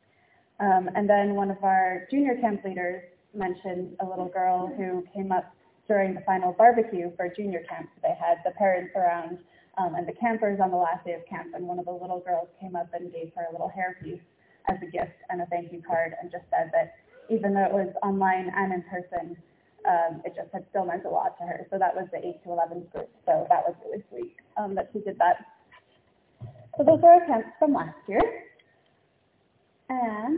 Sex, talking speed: female, 215 wpm